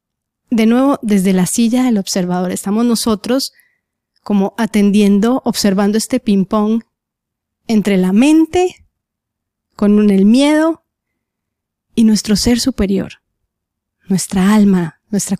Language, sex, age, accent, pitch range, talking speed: Spanish, female, 30-49, Colombian, 185-225 Hz, 105 wpm